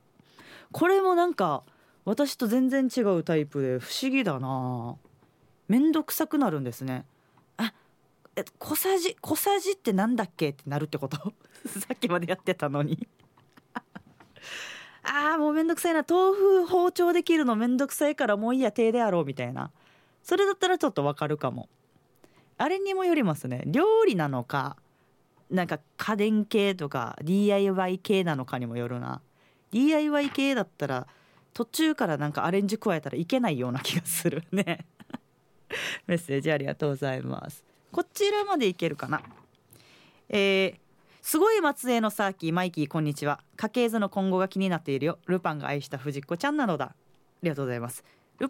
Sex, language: female, Japanese